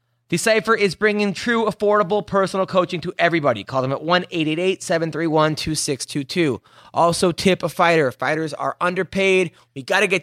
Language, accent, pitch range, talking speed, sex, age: English, American, 155-195 Hz, 140 wpm, male, 20-39